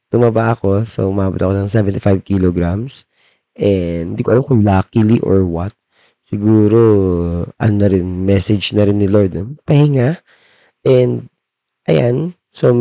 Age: 20-39